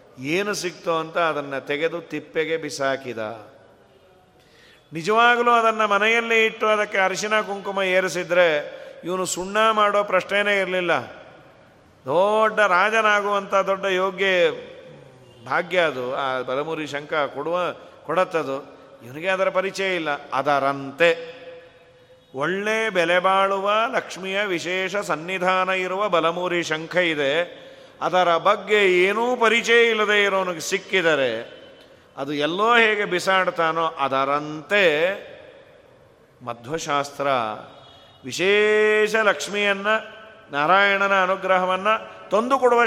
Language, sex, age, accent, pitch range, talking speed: Kannada, male, 40-59, native, 155-210 Hz, 90 wpm